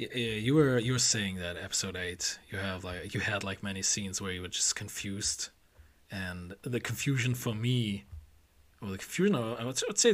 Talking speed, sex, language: 190 wpm, male, English